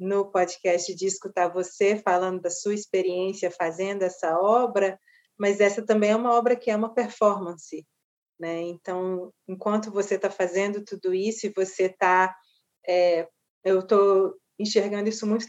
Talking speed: 145 wpm